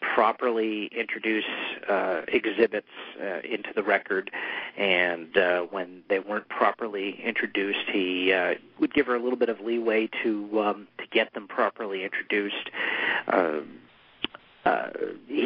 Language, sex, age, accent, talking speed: English, male, 40-59, American, 130 wpm